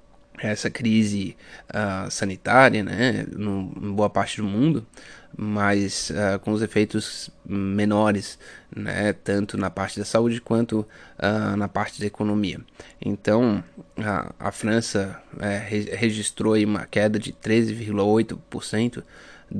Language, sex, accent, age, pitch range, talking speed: Portuguese, male, Brazilian, 20-39, 100-110 Hz, 105 wpm